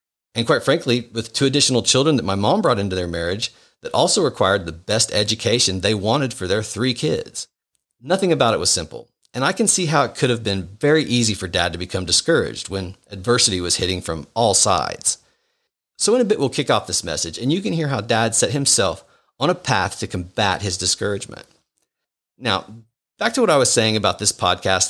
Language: English